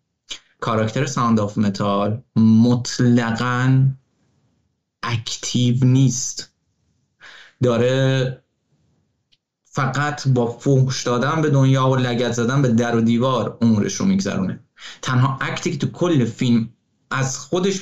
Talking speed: 105 wpm